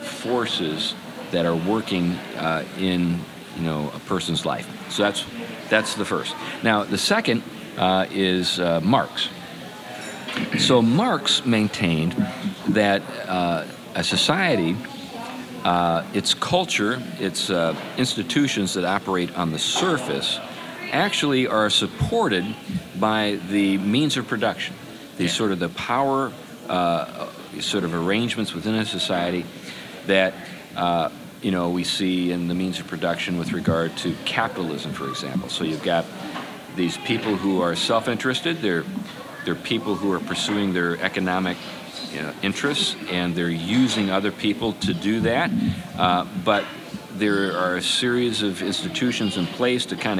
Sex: male